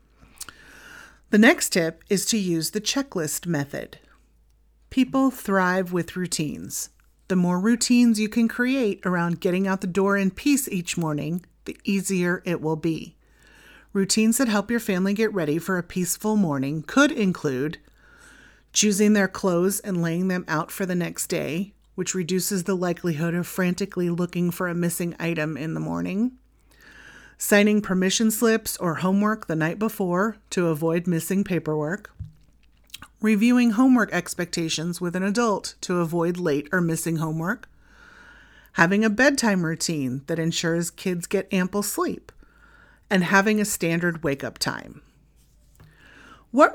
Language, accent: English, American